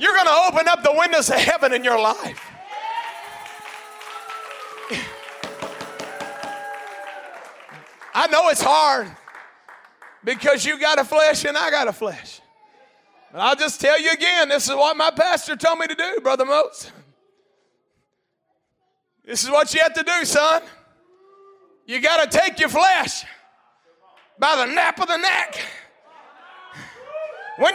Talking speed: 140 wpm